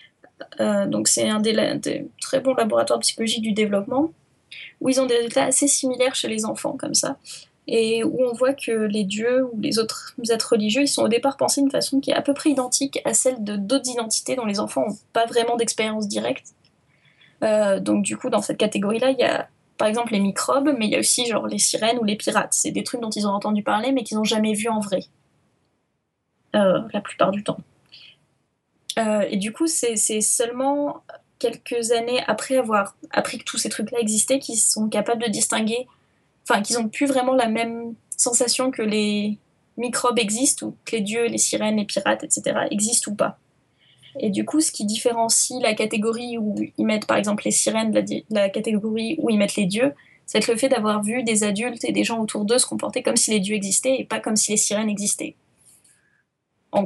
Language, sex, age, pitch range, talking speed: French, female, 10-29, 215-260 Hz, 215 wpm